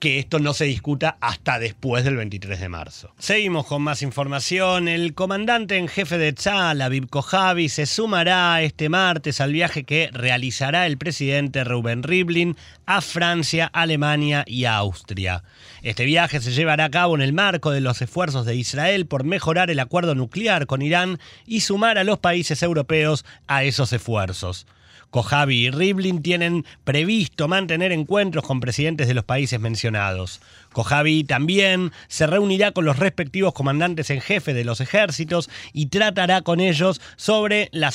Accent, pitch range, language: Argentinian, 135-180 Hz, Spanish